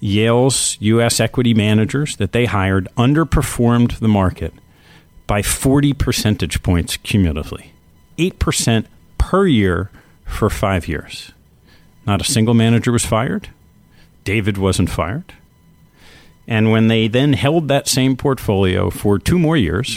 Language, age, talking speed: English, 50-69, 125 wpm